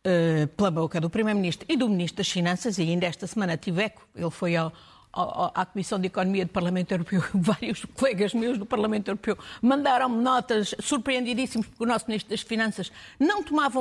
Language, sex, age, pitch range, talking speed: Portuguese, female, 50-69, 190-270 Hz, 185 wpm